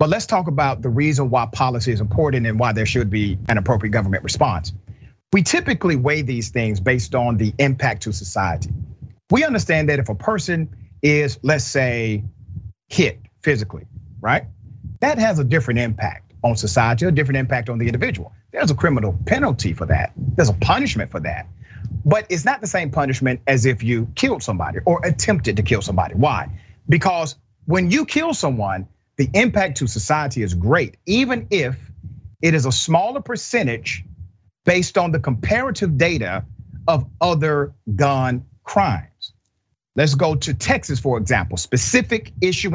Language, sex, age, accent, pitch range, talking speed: English, male, 40-59, American, 105-150 Hz, 165 wpm